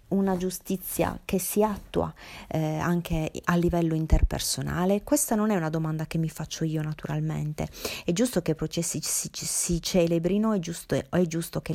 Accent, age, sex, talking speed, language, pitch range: native, 30-49, female, 165 wpm, Italian, 150-175 Hz